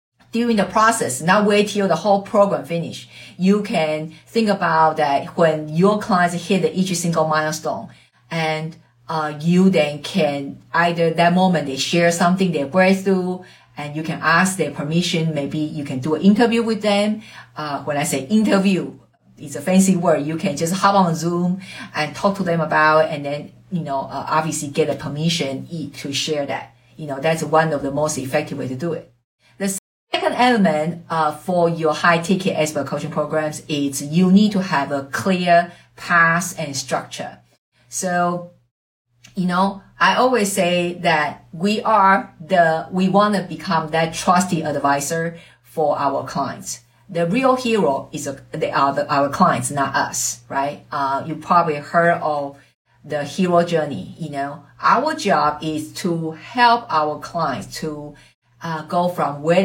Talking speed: 170 wpm